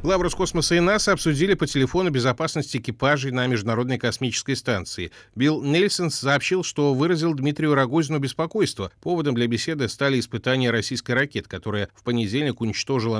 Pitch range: 115-150 Hz